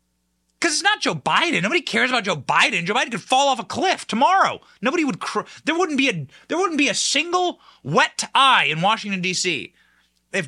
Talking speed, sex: 200 wpm, male